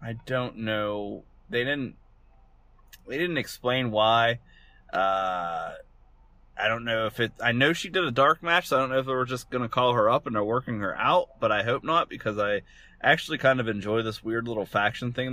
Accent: American